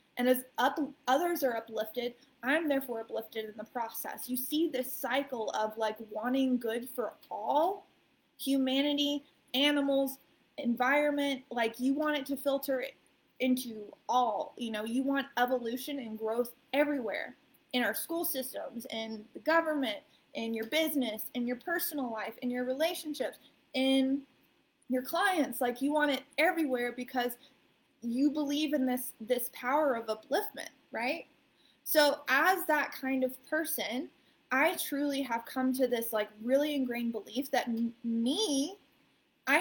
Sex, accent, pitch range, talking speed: female, American, 240-290 Hz, 145 wpm